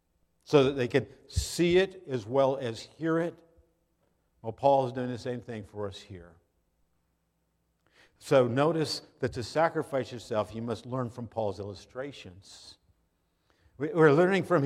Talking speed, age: 145 wpm, 50-69